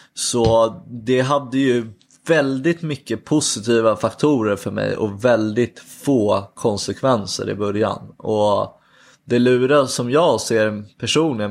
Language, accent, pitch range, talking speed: Swedish, native, 105-125 Hz, 120 wpm